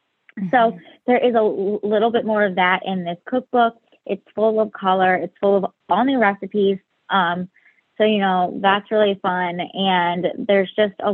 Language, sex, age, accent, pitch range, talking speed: English, female, 20-39, American, 180-220 Hz, 180 wpm